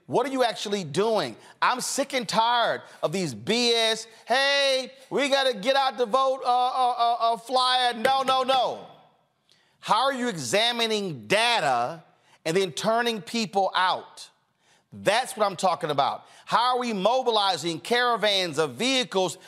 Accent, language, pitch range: American, English, 180-250 Hz